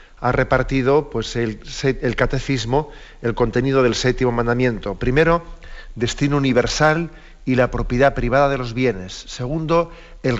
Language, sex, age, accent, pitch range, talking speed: Spanish, male, 40-59, Spanish, 120-150 Hz, 135 wpm